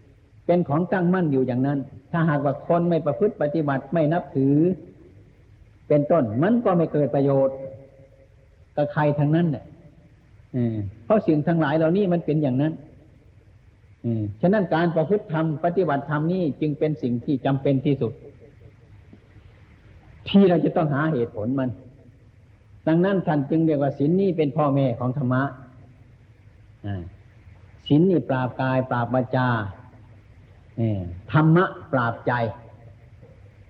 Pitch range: 110-155 Hz